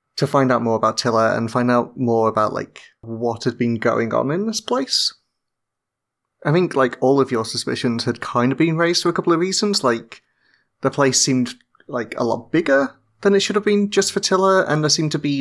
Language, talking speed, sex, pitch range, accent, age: English, 225 wpm, male, 120-150 Hz, British, 30-49